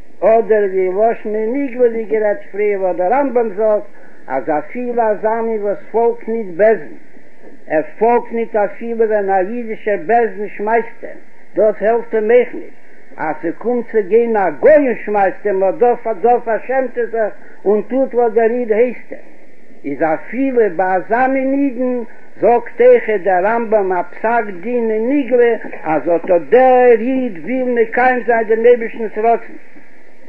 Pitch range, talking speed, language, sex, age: 210-240 Hz, 120 wpm, Hebrew, male, 60-79